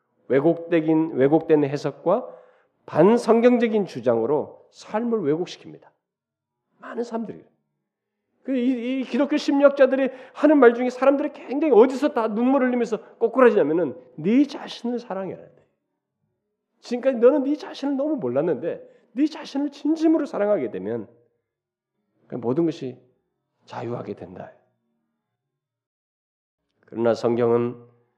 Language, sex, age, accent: Korean, male, 40-59, native